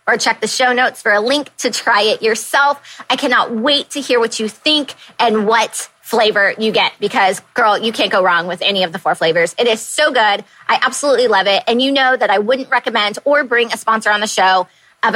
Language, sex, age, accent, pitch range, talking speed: English, female, 20-39, American, 210-265 Hz, 240 wpm